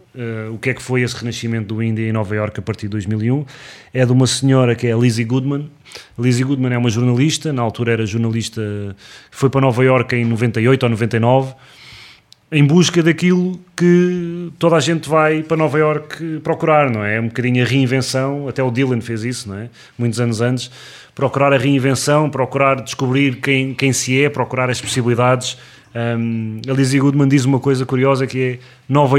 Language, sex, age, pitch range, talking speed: English, male, 20-39, 120-150 Hz, 190 wpm